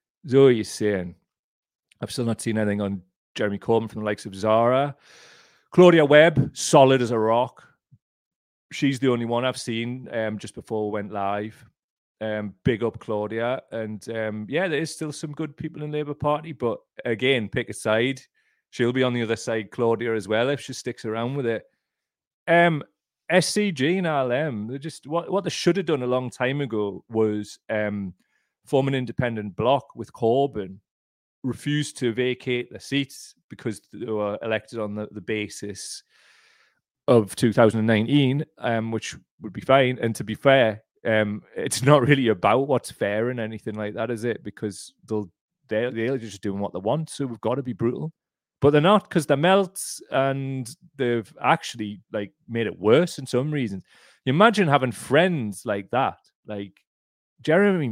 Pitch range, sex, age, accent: 110-140 Hz, male, 30-49, British